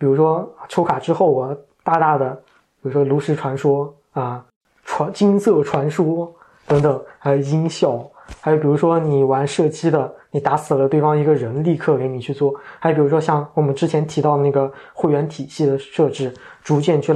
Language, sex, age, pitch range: Chinese, male, 20-39, 140-165 Hz